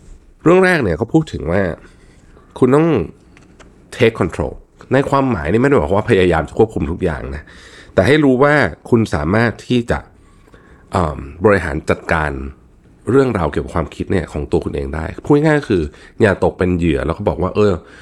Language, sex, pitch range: Thai, male, 80-110 Hz